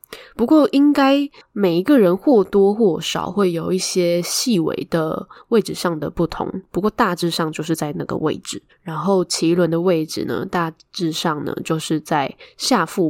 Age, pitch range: 10-29, 160-195 Hz